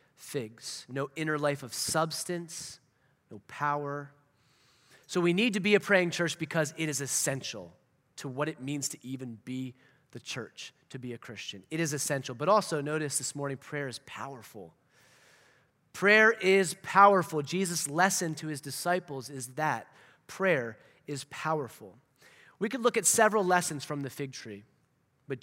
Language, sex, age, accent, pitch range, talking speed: English, male, 30-49, American, 135-180 Hz, 160 wpm